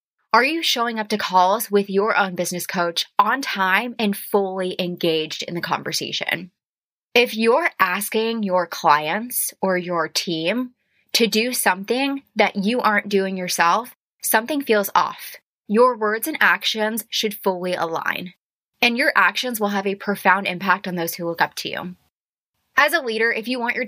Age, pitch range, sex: 20-39, 180-230 Hz, female